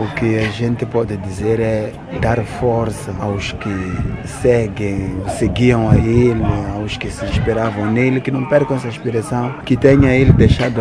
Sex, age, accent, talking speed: male, 30-49, Brazilian, 160 wpm